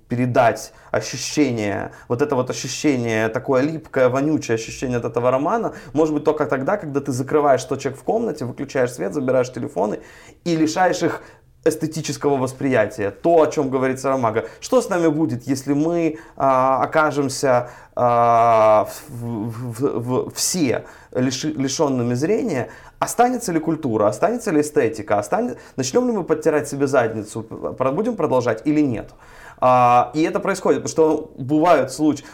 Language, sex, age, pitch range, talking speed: Ukrainian, male, 20-39, 125-155 Hz, 145 wpm